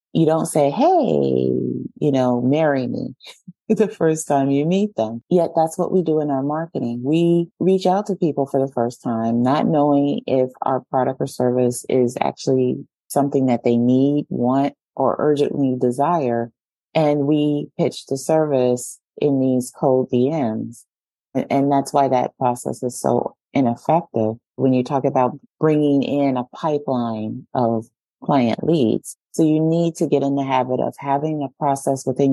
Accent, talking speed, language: American, 165 wpm, English